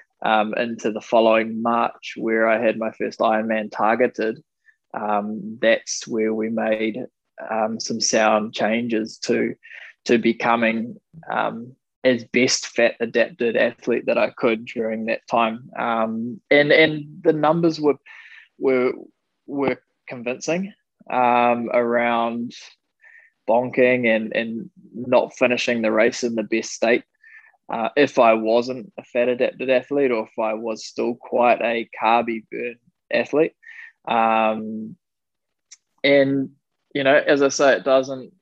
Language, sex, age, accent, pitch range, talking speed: English, male, 20-39, Australian, 115-135 Hz, 135 wpm